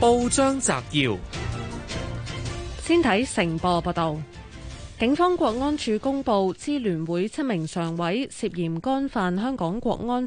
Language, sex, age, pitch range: Chinese, female, 20-39, 170-235 Hz